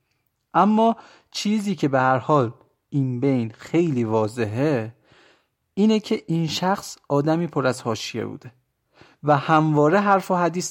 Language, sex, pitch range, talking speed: Persian, male, 120-165 Hz, 135 wpm